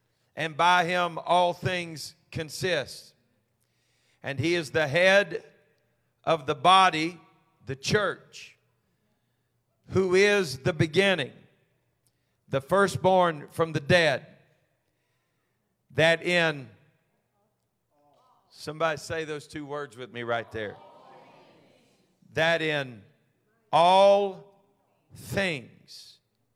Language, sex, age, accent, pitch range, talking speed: English, male, 50-69, American, 125-165 Hz, 90 wpm